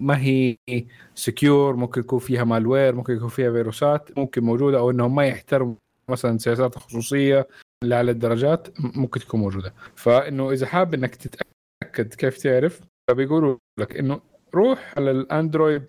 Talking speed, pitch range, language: 145 wpm, 120-145 Hz, Arabic